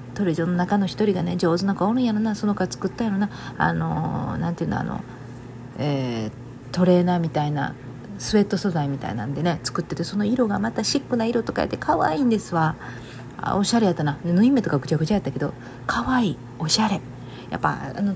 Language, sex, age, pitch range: Japanese, female, 40-59, 140-185 Hz